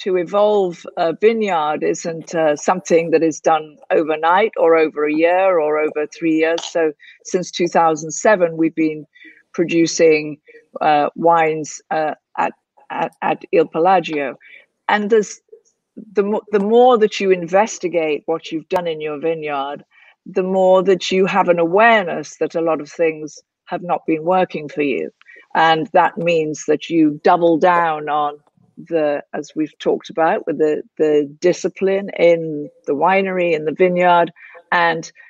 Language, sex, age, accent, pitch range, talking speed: Italian, female, 50-69, British, 155-190 Hz, 150 wpm